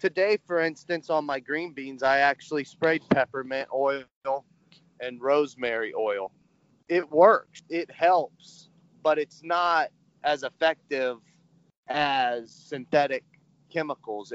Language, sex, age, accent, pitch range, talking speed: English, male, 30-49, American, 130-170 Hz, 115 wpm